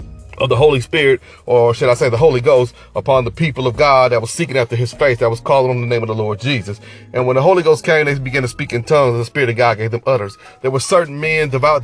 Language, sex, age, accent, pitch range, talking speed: English, male, 30-49, American, 120-145 Hz, 290 wpm